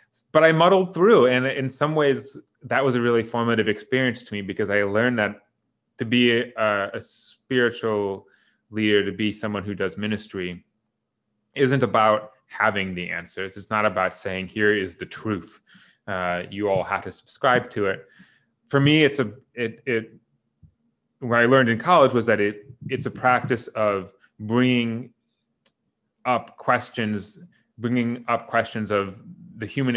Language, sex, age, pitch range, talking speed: English, male, 30-49, 100-120 Hz, 160 wpm